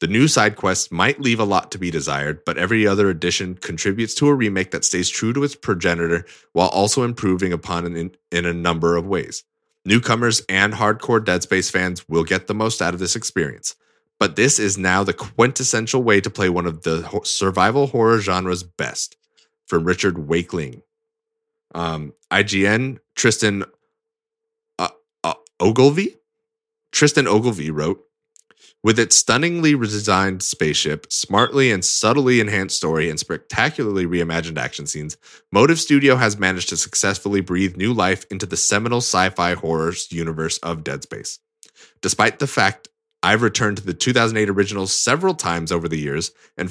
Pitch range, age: 90-125 Hz, 20-39